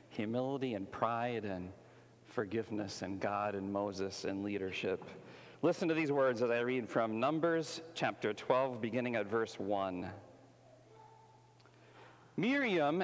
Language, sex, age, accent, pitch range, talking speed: English, male, 50-69, American, 120-180 Hz, 125 wpm